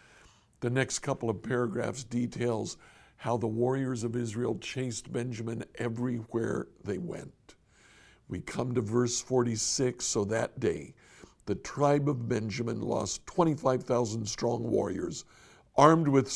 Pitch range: 115-140 Hz